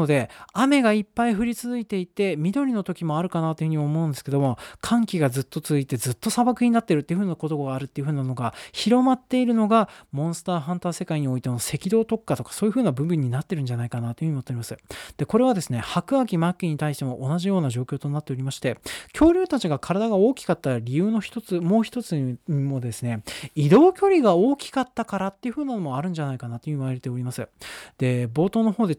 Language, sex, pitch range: Japanese, male, 135-200 Hz